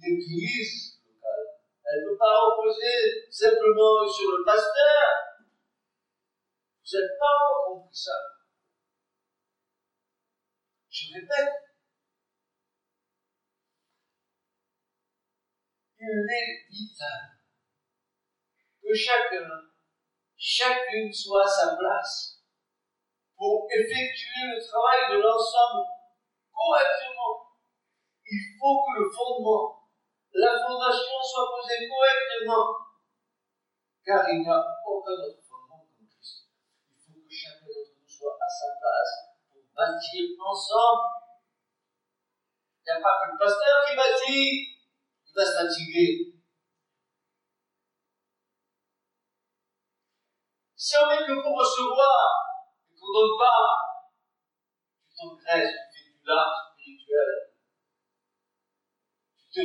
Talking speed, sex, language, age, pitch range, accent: 100 wpm, male, French, 50-69, 215-330 Hz, French